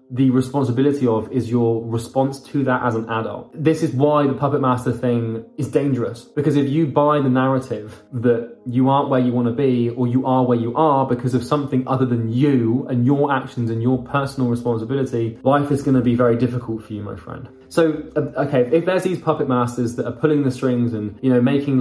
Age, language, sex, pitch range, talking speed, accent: 20-39, English, male, 125-150 Hz, 215 wpm, British